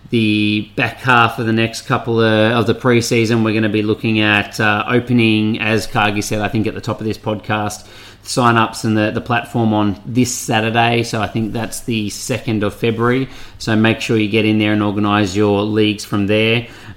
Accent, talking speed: Australian, 210 wpm